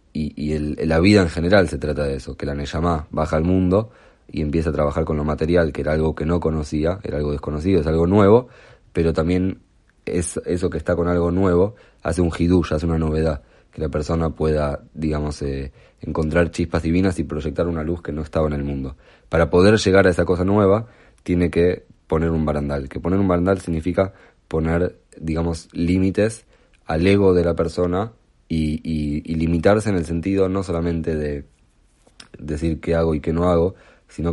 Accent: Argentinian